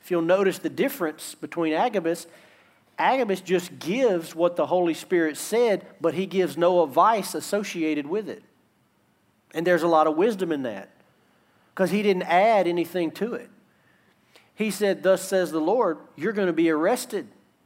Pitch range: 155-200 Hz